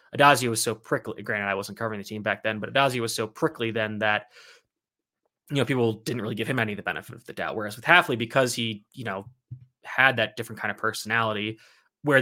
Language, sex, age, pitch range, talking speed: English, male, 20-39, 105-125 Hz, 230 wpm